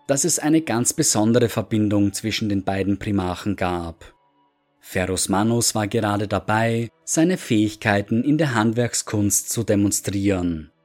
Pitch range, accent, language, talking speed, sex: 100-140 Hz, German, German, 125 wpm, male